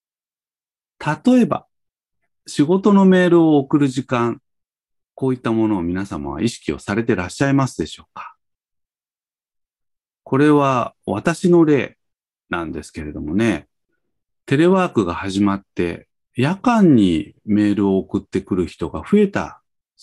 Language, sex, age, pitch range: Japanese, male, 40-59, 95-150 Hz